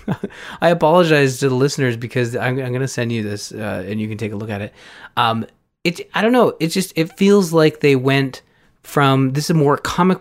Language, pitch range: English, 105-135 Hz